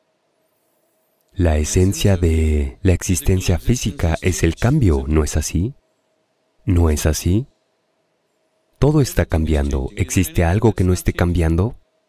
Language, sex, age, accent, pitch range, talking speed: Spanish, male, 30-49, Mexican, 80-100 Hz, 120 wpm